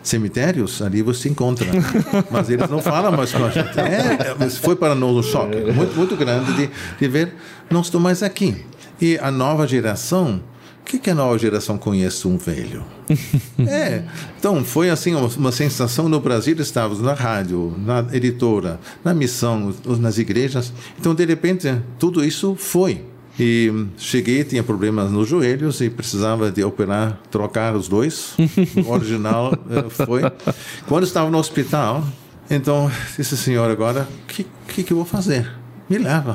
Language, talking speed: Portuguese, 165 wpm